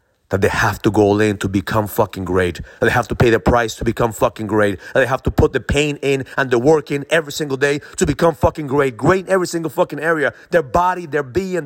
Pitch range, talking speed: 85-140 Hz, 260 wpm